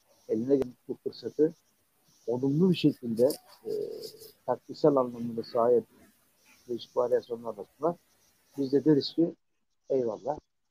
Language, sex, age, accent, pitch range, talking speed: Turkish, male, 60-79, native, 135-180 Hz, 100 wpm